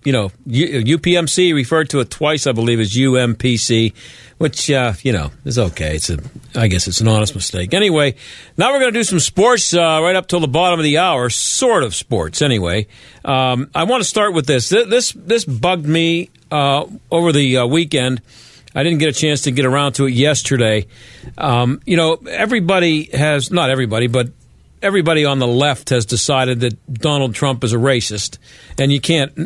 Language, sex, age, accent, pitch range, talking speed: English, male, 50-69, American, 125-160 Hz, 200 wpm